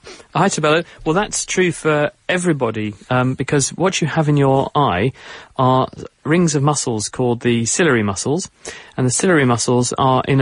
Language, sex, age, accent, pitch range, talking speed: English, male, 40-59, British, 120-145 Hz, 165 wpm